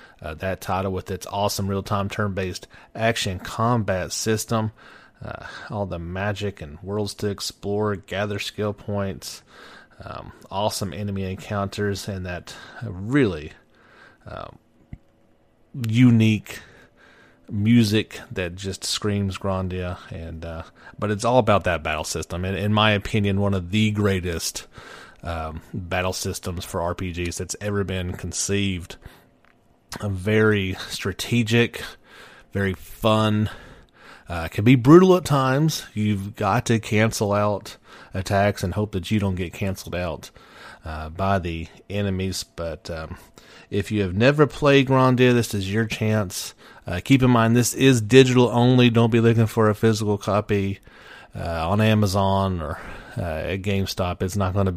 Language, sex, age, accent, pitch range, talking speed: English, male, 30-49, American, 95-110 Hz, 140 wpm